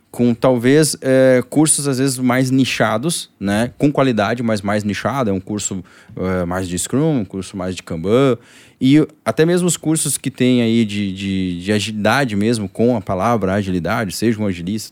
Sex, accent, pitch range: male, Brazilian, 105-145 Hz